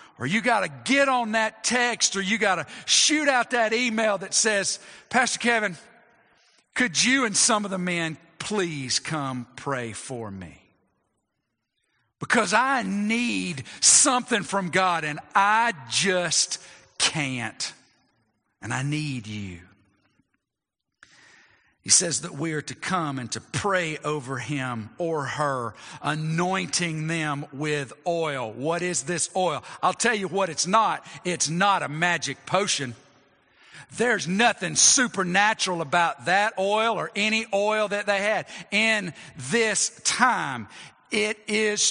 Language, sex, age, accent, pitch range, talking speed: English, male, 50-69, American, 150-215 Hz, 135 wpm